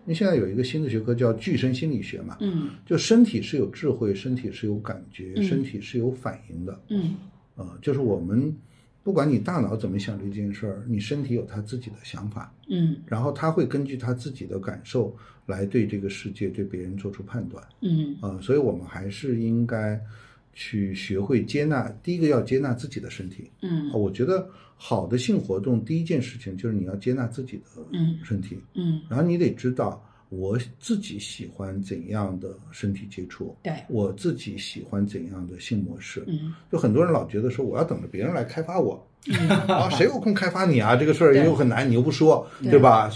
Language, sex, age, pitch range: Chinese, male, 50-69, 100-140 Hz